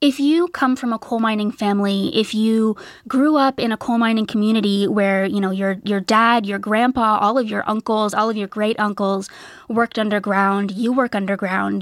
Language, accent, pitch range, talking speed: English, American, 205-245 Hz, 200 wpm